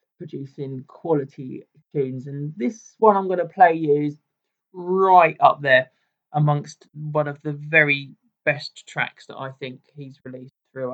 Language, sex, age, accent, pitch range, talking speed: English, male, 20-39, British, 135-165 Hz, 155 wpm